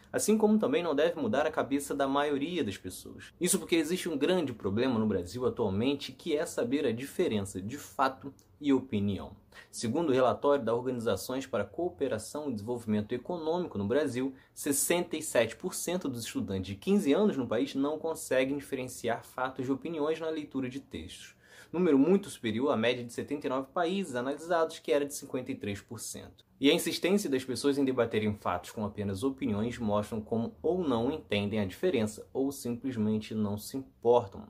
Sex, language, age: male, Portuguese, 20-39